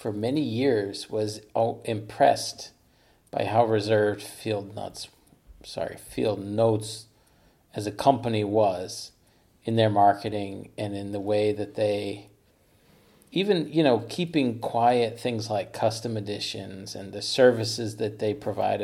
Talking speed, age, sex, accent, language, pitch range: 130 wpm, 40-59, male, American, English, 105-125 Hz